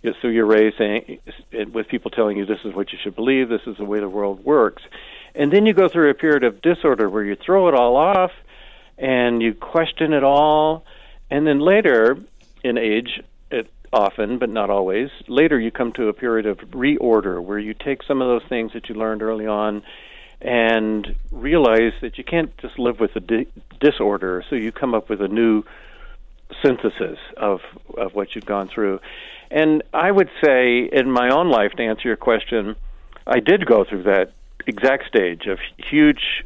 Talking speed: 190 wpm